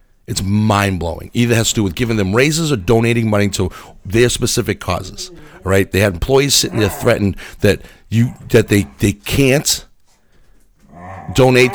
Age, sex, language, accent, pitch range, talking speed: 40-59, male, English, American, 95-125 Hz, 160 wpm